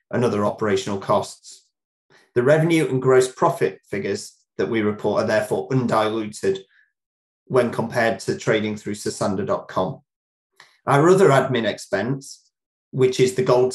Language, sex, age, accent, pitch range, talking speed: English, male, 30-49, British, 115-140 Hz, 130 wpm